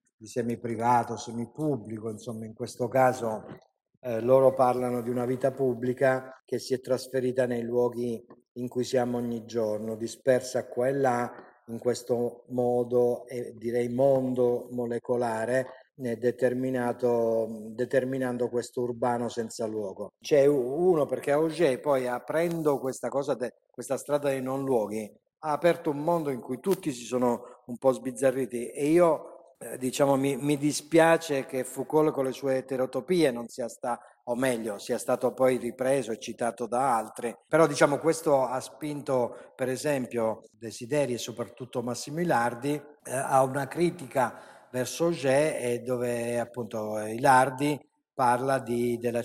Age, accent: 50-69, native